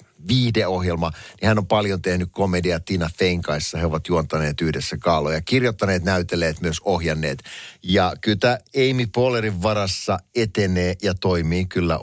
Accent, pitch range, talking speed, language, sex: native, 85-125 Hz, 135 wpm, Finnish, male